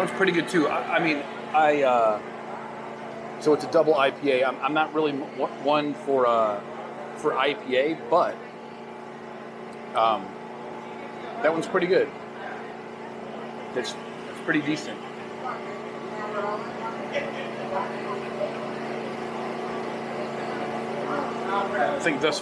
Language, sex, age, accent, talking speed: English, male, 40-59, American, 95 wpm